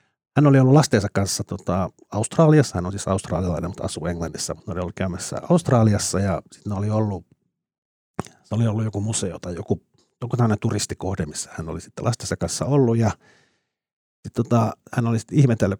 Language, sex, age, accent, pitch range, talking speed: Finnish, male, 50-69, native, 95-115 Hz, 175 wpm